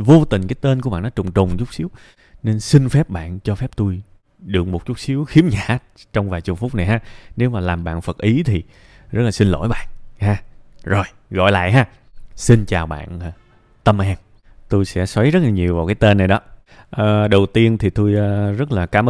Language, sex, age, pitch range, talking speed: Vietnamese, male, 20-39, 90-115 Hz, 225 wpm